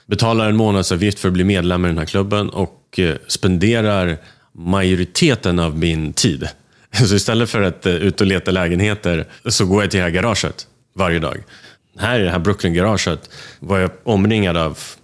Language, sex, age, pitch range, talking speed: Swedish, male, 30-49, 85-105 Hz, 170 wpm